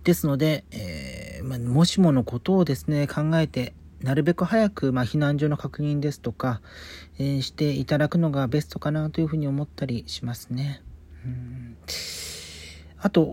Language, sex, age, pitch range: Japanese, male, 40-59, 110-160 Hz